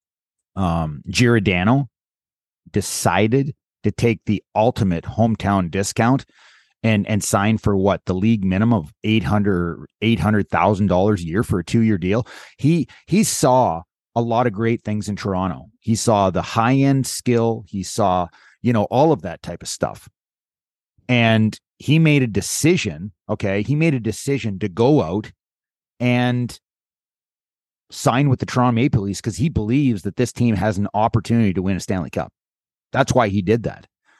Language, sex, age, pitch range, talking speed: English, male, 30-49, 100-125 Hz, 160 wpm